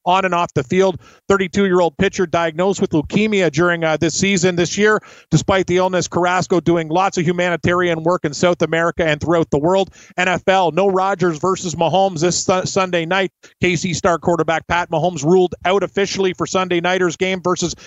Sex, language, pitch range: male, English, 165-190 Hz